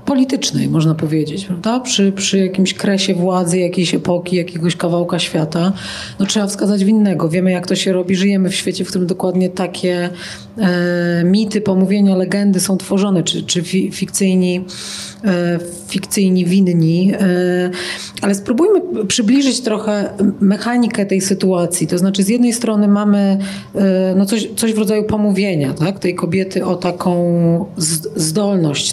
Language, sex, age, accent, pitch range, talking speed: Polish, female, 40-59, native, 180-210 Hz, 125 wpm